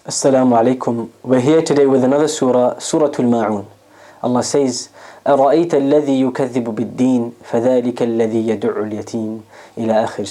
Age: 20-39